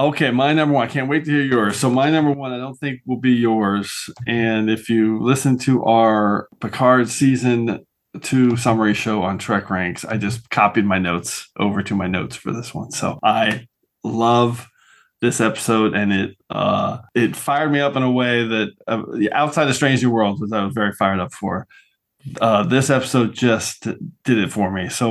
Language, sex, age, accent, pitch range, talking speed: English, male, 20-39, American, 110-135 Hz, 200 wpm